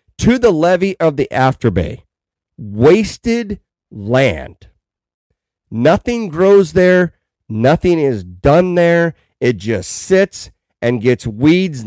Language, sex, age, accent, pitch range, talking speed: English, male, 50-69, American, 115-180 Hz, 110 wpm